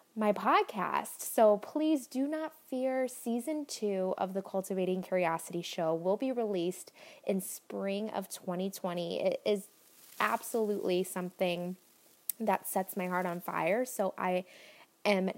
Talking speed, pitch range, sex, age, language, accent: 135 wpm, 190-255 Hz, female, 20-39, English, American